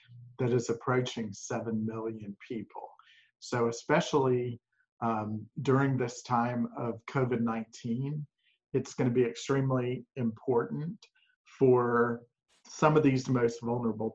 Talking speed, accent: 105 wpm, American